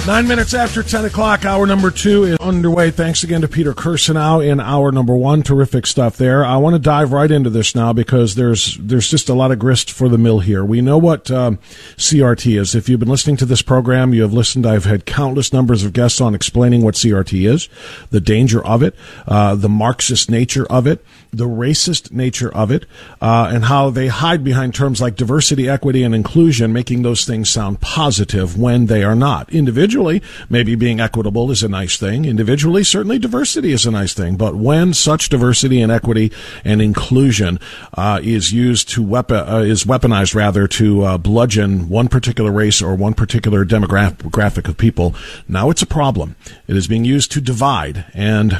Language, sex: English, male